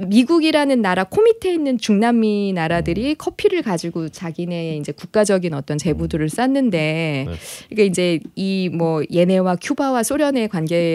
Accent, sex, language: native, female, Korean